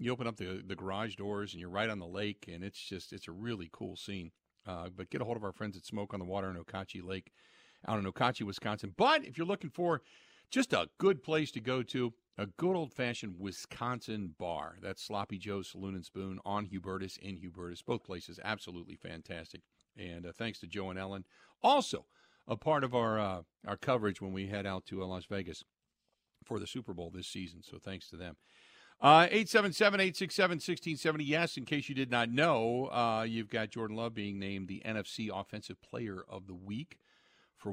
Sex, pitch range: male, 90-115 Hz